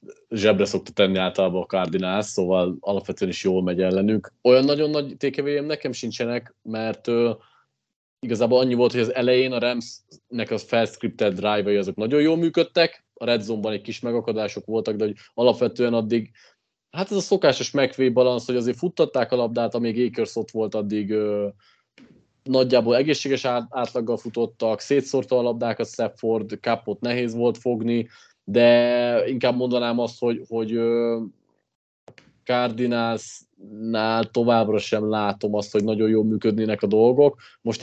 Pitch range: 110-125 Hz